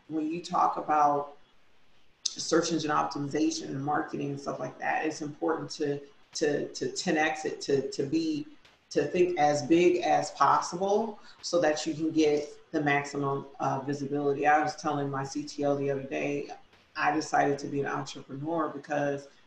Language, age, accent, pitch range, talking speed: English, 40-59, American, 140-155 Hz, 165 wpm